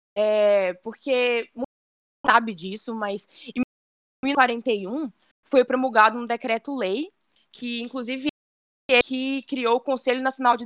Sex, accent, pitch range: female, Brazilian, 210-270 Hz